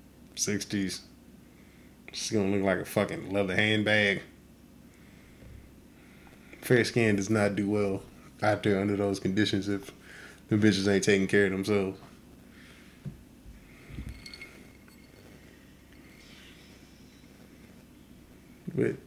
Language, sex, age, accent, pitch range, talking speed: English, male, 20-39, American, 105-140 Hz, 90 wpm